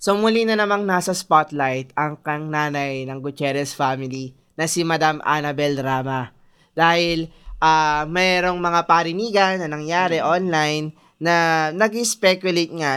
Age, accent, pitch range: 20-39, native, 150-190 Hz